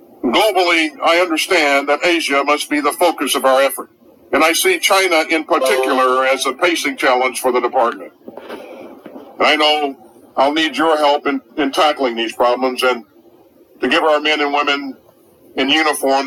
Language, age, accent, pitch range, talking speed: English, 50-69, American, 140-170 Hz, 170 wpm